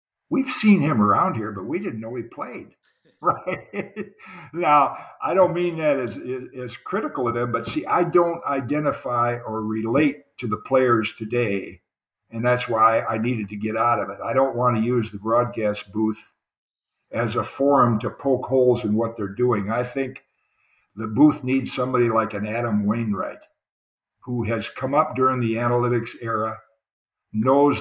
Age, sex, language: 60-79, male, English